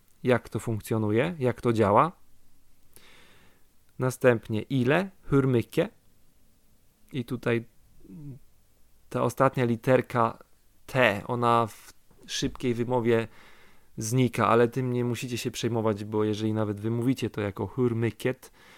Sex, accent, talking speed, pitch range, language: male, native, 105 wpm, 100-120 Hz, Polish